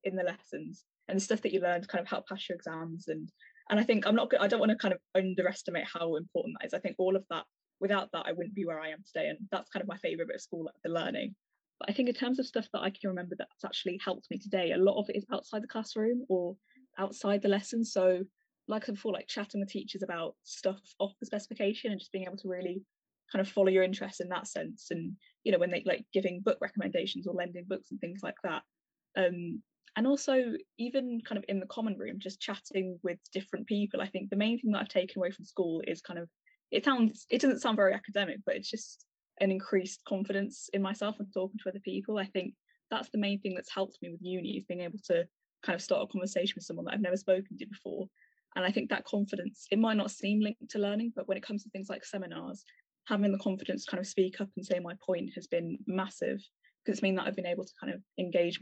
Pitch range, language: 185-220 Hz, English